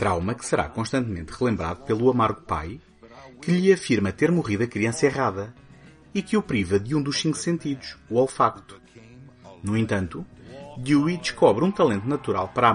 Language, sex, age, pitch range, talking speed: Portuguese, male, 30-49, 100-145 Hz, 170 wpm